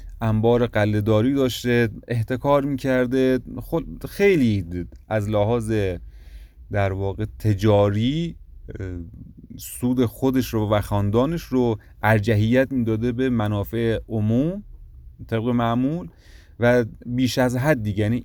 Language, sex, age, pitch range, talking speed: Persian, male, 30-49, 95-125 Hz, 100 wpm